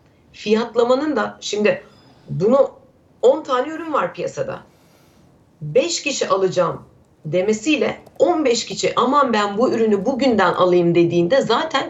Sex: female